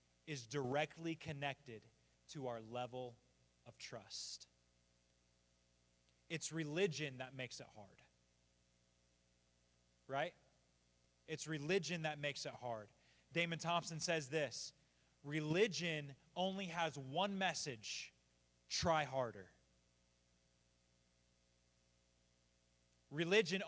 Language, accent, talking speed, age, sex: English, American, 85 wpm, 30-49, male